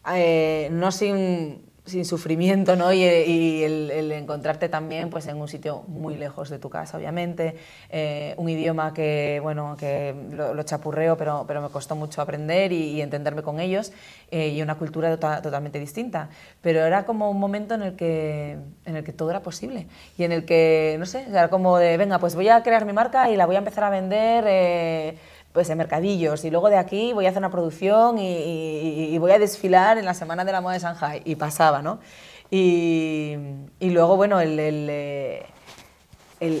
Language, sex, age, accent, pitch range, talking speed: Spanish, female, 30-49, Spanish, 155-180 Hz, 200 wpm